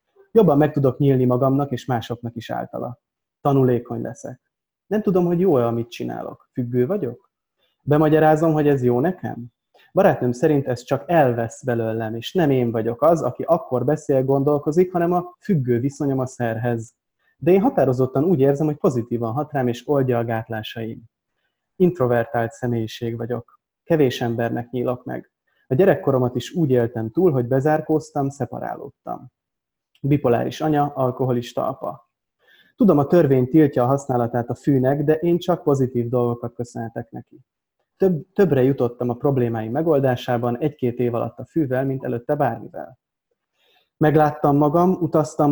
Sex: male